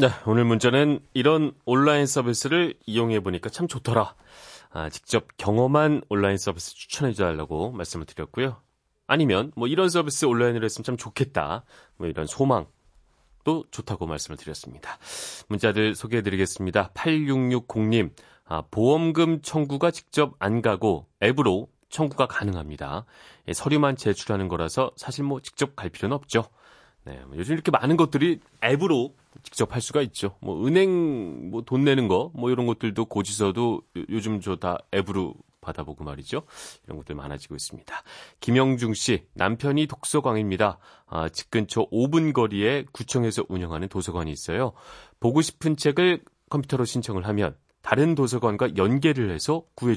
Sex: male